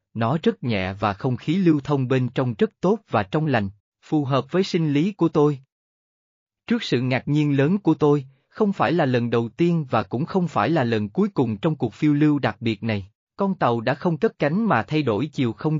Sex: male